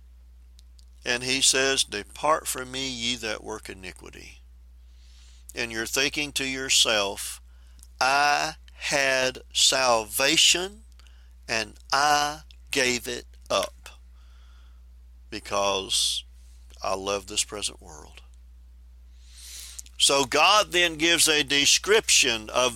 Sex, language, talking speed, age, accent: male, English, 95 wpm, 50-69, American